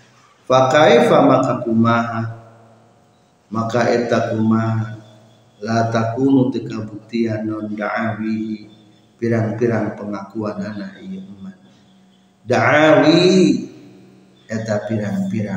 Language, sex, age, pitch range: Indonesian, male, 50-69, 115-140 Hz